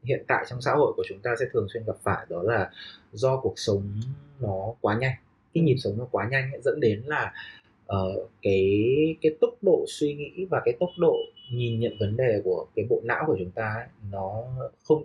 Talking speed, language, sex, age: 220 wpm, Vietnamese, male, 20-39